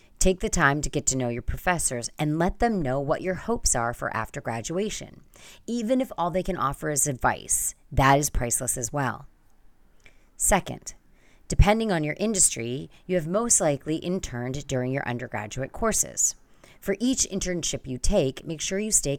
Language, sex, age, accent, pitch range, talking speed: English, female, 30-49, American, 125-180 Hz, 175 wpm